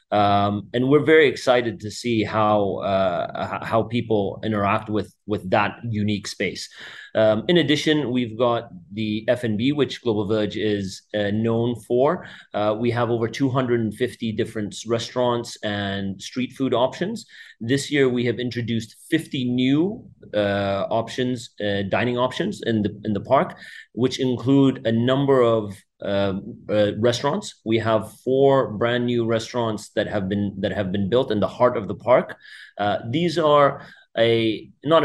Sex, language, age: male, English, 30-49